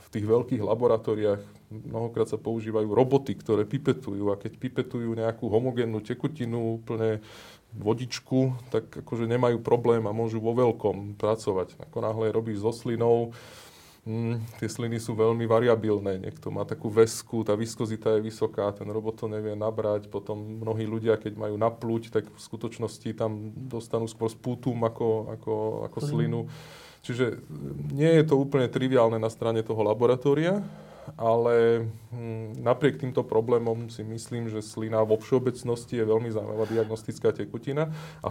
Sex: male